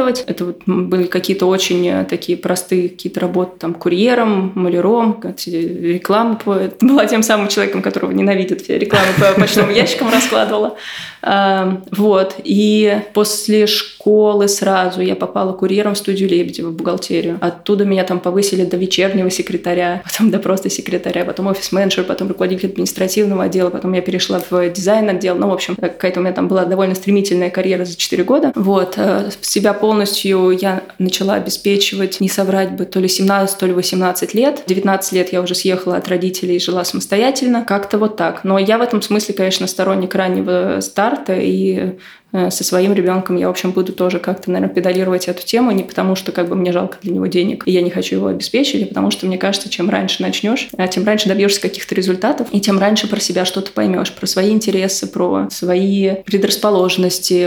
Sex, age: female, 20-39